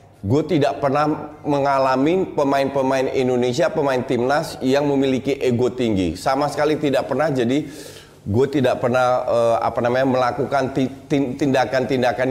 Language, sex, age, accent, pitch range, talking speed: Indonesian, male, 30-49, native, 130-180 Hz, 120 wpm